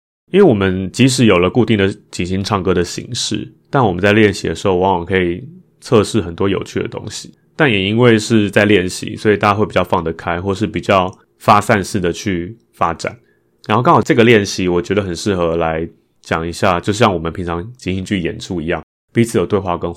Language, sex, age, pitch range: Chinese, male, 30-49, 85-110 Hz